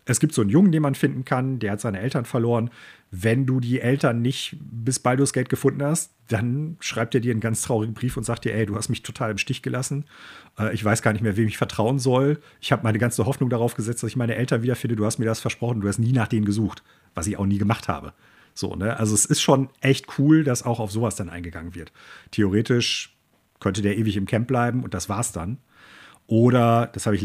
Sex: male